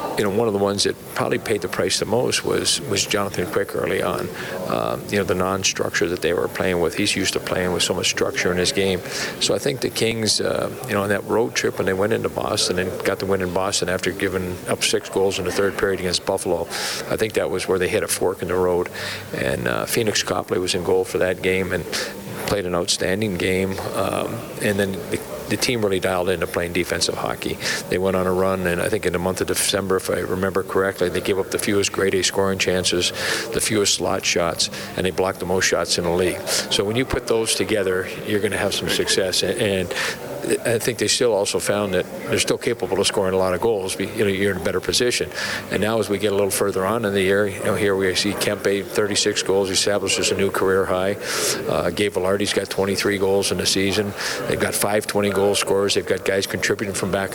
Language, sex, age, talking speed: English, male, 50-69, 245 wpm